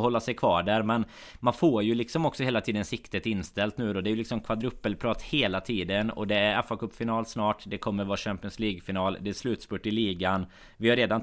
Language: Swedish